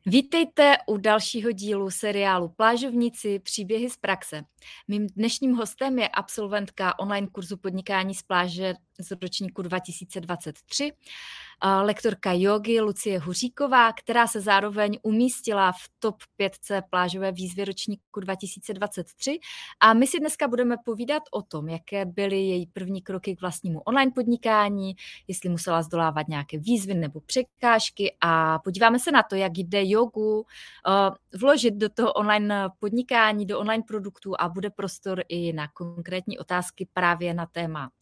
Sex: female